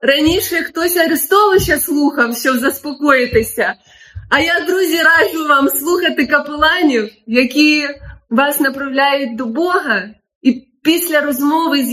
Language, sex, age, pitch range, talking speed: Ukrainian, female, 20-39, 245-315 Hz, 110 wpm